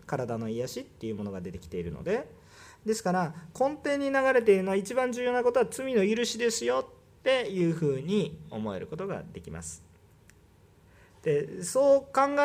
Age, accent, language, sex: 40-59, native, Japanese, male